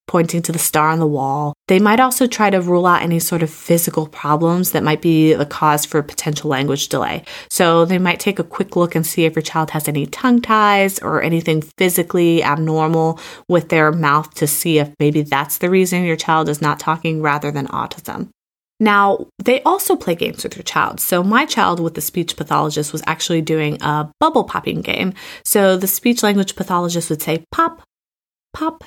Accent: American